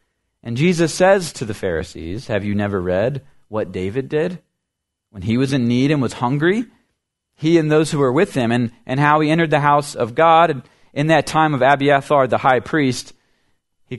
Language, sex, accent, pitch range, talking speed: English, male, American, 90-125 Hz, 200 wpm